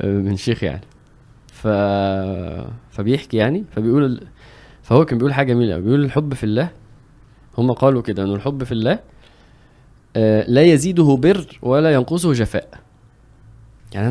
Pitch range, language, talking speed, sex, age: 110-140 Hz, Arabic, 130 wpm, male, 20-39